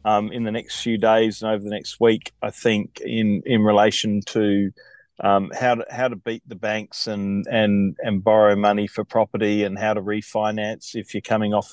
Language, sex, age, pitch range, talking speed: English, male, 40-59, 100-115 Hz, 205 wpm